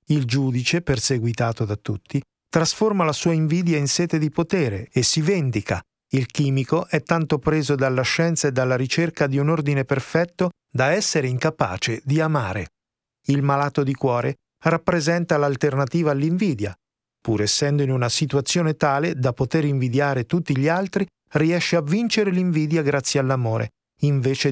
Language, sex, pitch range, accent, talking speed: Italian, male, 125-170 Hz, native, 150 wpm